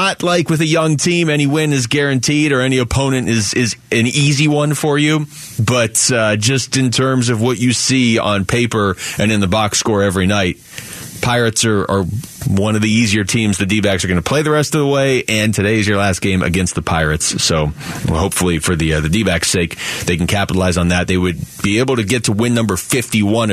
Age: 30-49